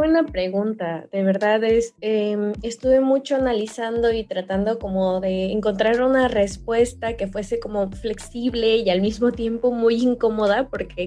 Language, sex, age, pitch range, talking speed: Spanish, female, 20-39, 200-250 Hz, 145 wpm